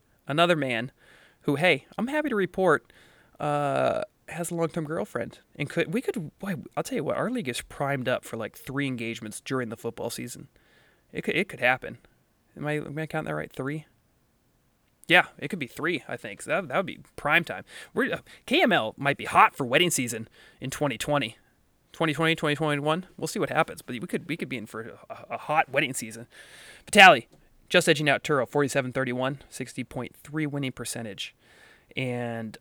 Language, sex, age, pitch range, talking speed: English, male, 20-39, 130-165 Hz, 190 wpm